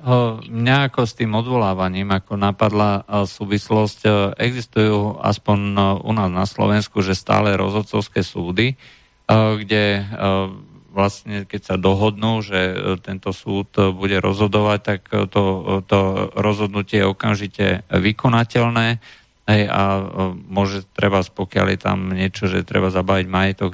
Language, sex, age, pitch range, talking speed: Czech, male, 50-69, 95-110 Hz, 115 wpm